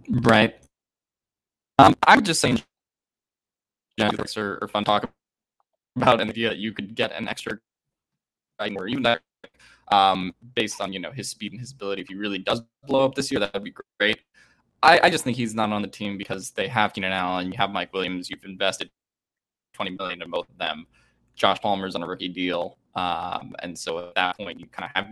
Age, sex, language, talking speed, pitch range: 20-39, male, English, 210 wpm, 95-120 Hz